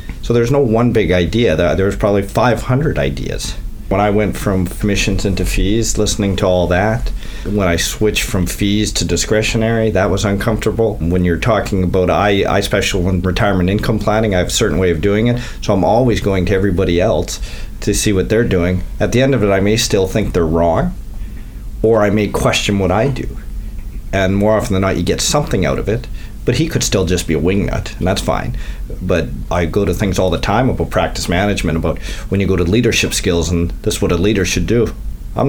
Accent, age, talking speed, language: American, 40-59, 220 wpm, English